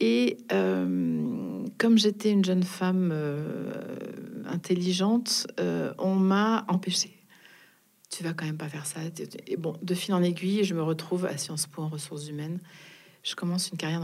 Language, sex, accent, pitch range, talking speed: French, female, French, 155-185 Hz, 165 wpm